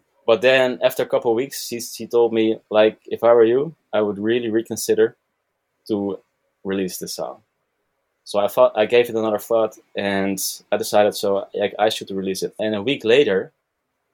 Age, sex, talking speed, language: 20-39, male, 190 wpm, English